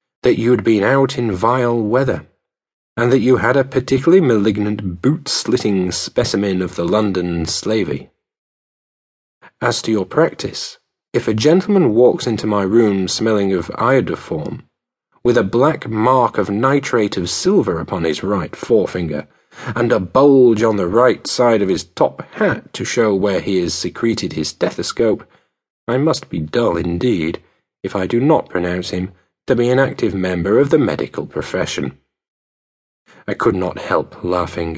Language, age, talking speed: English, 40-59, 155 wpm